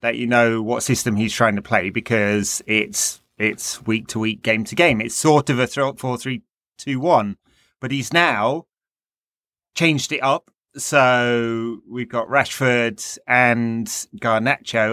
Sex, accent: male, British